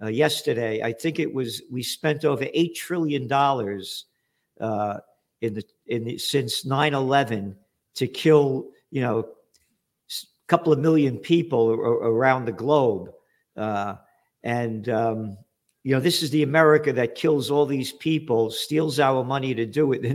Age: 50-69